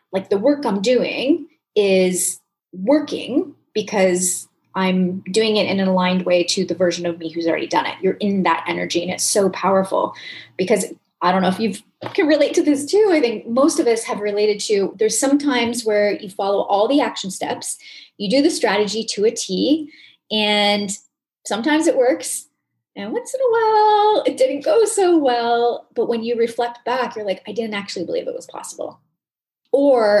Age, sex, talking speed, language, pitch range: 20-39, female, 195 wpm, English, 185-255 Hz